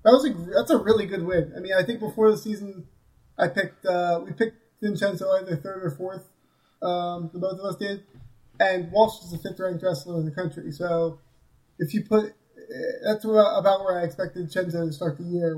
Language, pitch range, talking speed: English, 170-200 Hz, 210 wpm